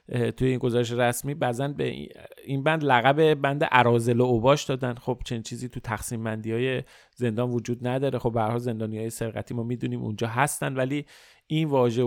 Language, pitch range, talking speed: Persian, 120-145 Hz, 180 wpm